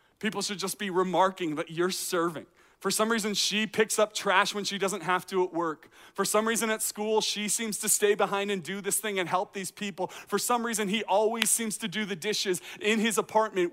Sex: male